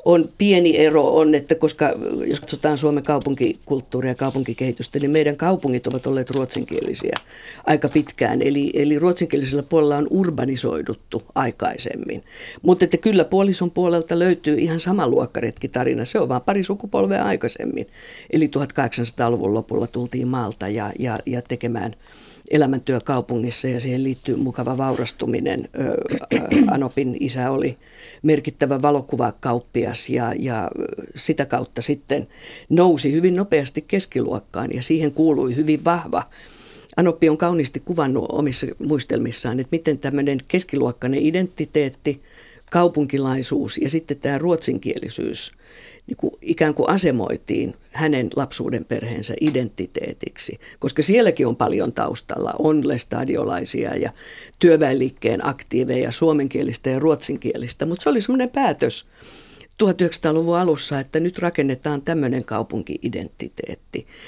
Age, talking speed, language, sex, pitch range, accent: 50-69, 120 wpm, Finnish, female, 130-170 Hz, native